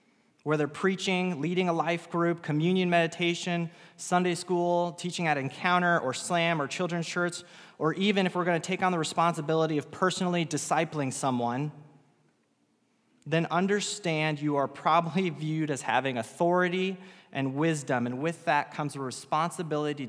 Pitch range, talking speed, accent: 130-170 Hz, 145 wpm, American